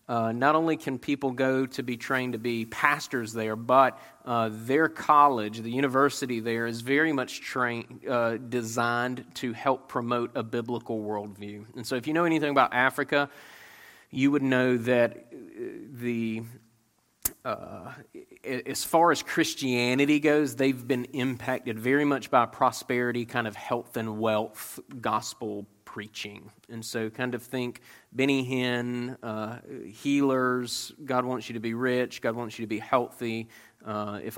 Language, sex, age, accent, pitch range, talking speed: English, male, 30-49, American, 110-130 Hz, 155 wpm